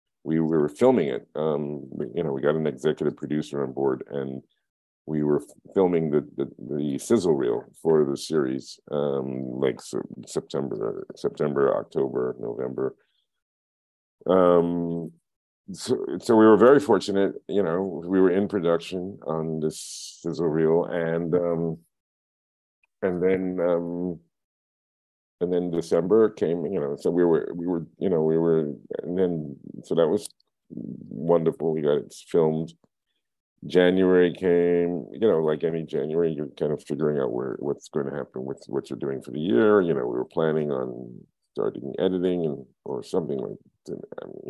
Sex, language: male, English